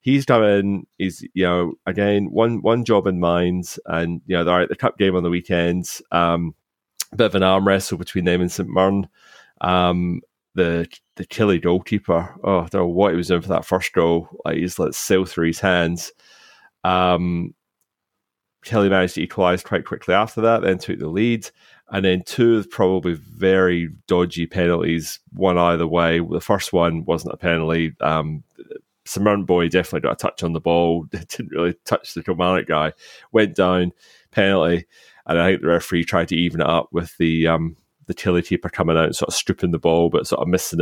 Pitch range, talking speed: 85-95 Hz, 200 wpm